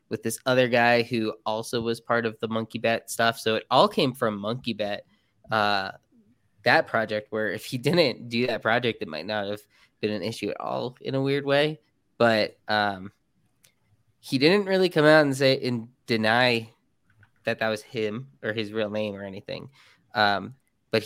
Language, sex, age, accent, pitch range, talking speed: English, male, 10-29, American, 110-135 Hz, 190 wpm